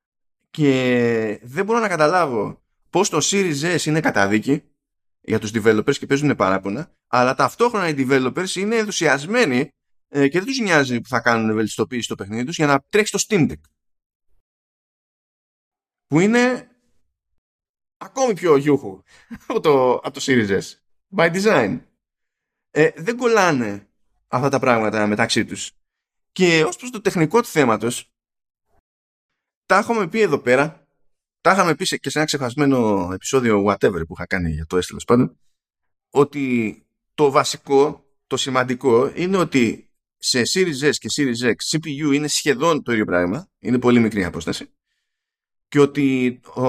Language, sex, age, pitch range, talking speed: Greek, male, 20-39, 110-160 Hz, 145 wpm